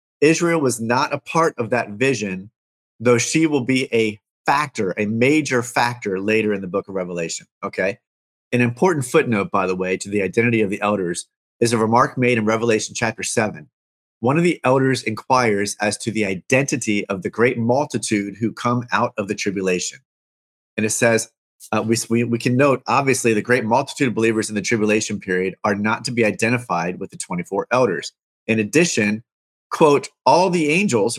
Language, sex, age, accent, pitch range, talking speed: English, male, 30-49, American, 105-135 Hz, 185 wpm